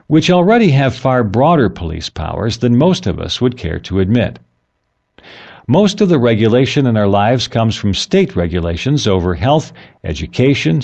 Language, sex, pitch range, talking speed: English, male, 100-140 Hz, 160 wpm